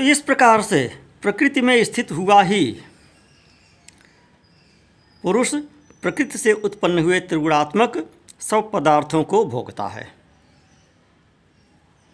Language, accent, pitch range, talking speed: Hindi, native, 140-210 Hz, 95 wpm